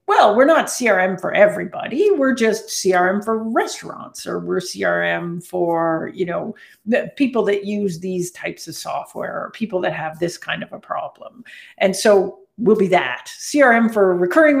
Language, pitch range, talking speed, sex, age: Finnish, 185-260 Hz, 175 wpm, female, 50-69